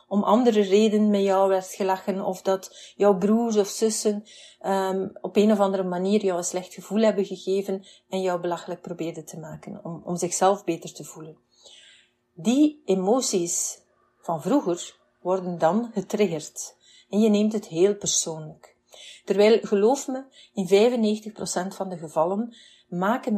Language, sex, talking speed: Dutch, female, 150 wpm